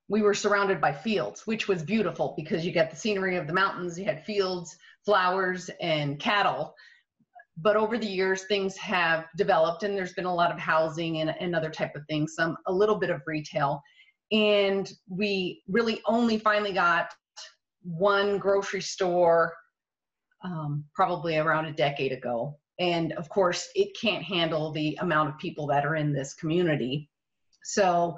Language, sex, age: English, female, 30-49